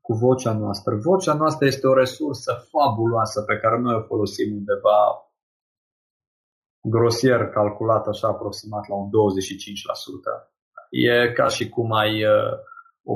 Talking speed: 130 wpm